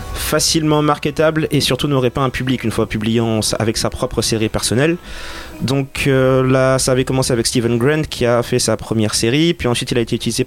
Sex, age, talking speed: male, 30-49, 210 wpm